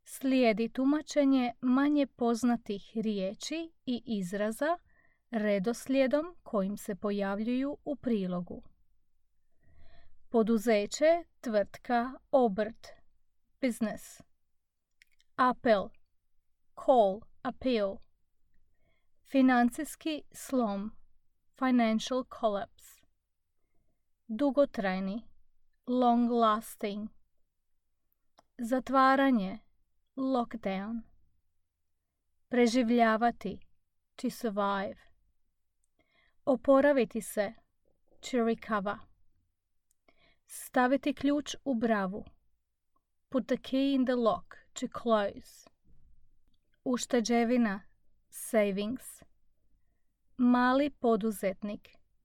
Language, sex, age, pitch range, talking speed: English, female, 30-49, 205-260 Hz, 60 wpm